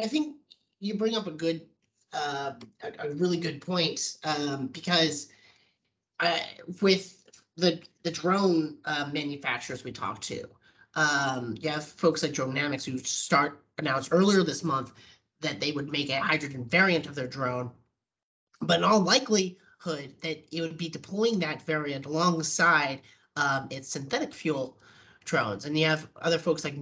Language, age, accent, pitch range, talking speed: English, 30-49, American, 135-175 Hz, 155 wpm